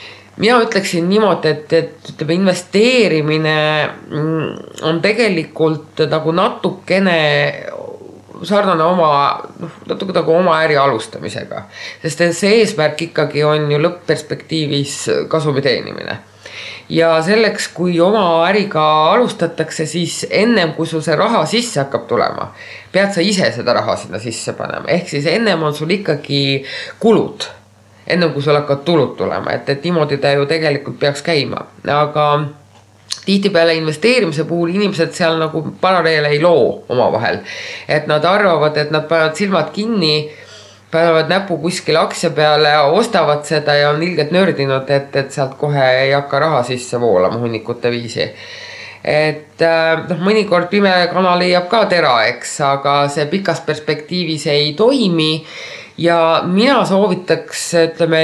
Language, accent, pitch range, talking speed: English, Finnish, 150-180 Hz, 135 wpm